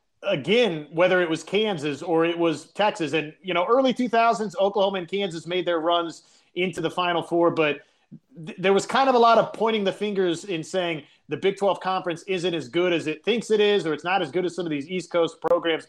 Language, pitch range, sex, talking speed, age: English, 160-195 Hz, male, 230 wpm, 30-49